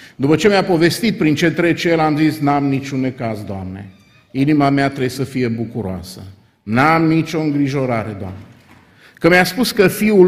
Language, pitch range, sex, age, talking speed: Romanian, 125-180 Hz, male, 50-69, 170 wpm